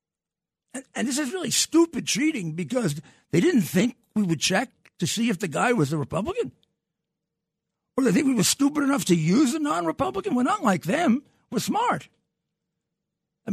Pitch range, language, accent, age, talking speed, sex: 155-200 Hz, English, American, 60-79, 170 wpm, male